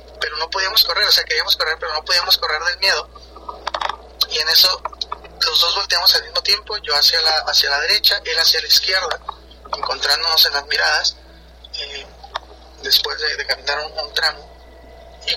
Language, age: Spanish, 30-49